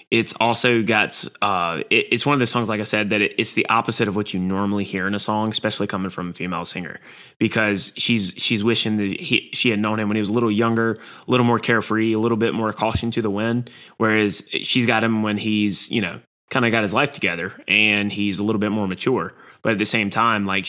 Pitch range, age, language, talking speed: 95-115 Hz, 20-39, English, 250 wpm